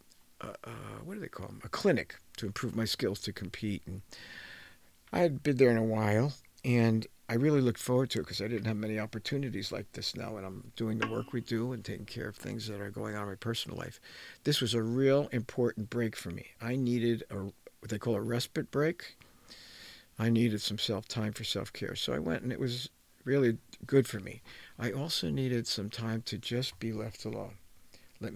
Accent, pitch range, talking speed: American, 110-130 Hz, 220 wpm